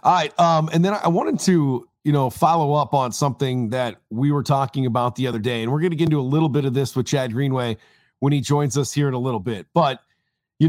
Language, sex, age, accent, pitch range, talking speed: English, male, 40-59, American, 135-170 Hz, 265 wpm